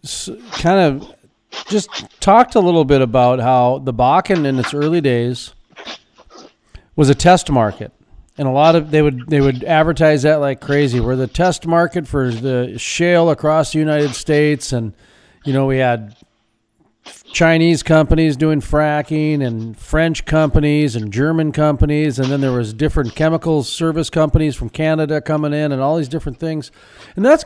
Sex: male